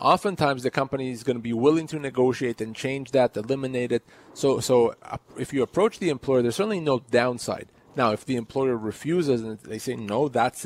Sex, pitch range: male, 125-160 Hz